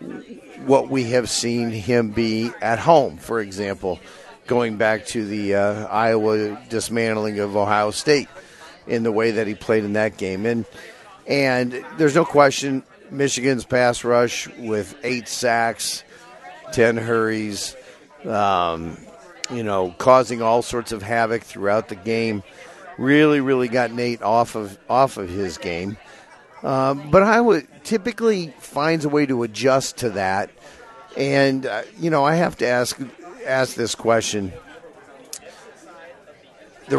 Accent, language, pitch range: American, English, 105-125 Hz